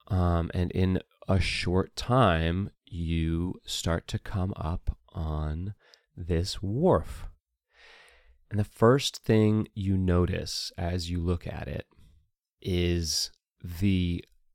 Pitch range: 85-105 Hz